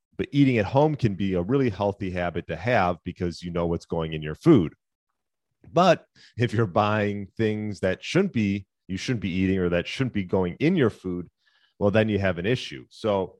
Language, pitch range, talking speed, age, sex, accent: English, 85-110 Hz, 210 wpm, 40-59, male, American